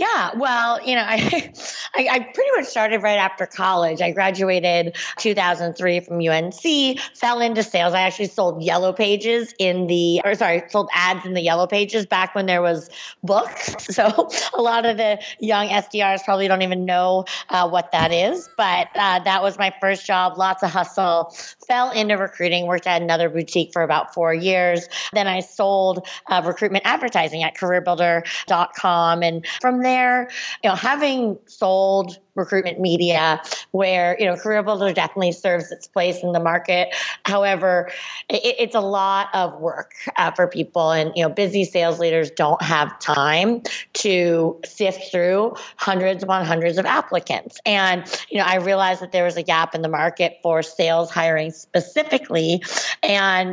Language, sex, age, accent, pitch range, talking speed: English, female, 30-49, American, 175-205 Hz, 170 wpm